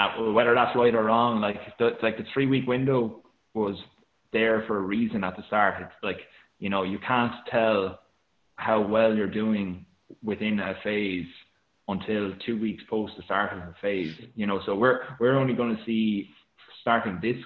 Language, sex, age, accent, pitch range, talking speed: English, male, 20-39, Irish, 95-115 Hz, 190 wpm